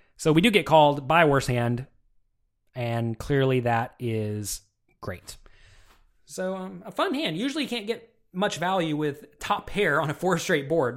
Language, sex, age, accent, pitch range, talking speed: English, male, 30-49, American, 120-180 Hz, 175 wpm